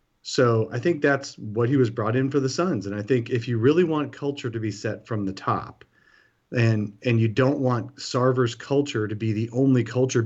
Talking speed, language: 220 wpm, English